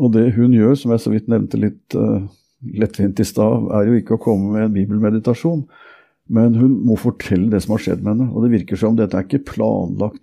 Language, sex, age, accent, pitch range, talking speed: English, male, 50-69, Norwegian, 105-125 Hz, 230 wpm